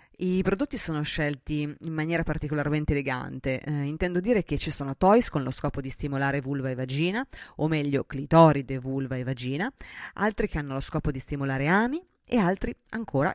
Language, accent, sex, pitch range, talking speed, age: Italian, native, female, 145-180 Hz, 180 wpm, 30-49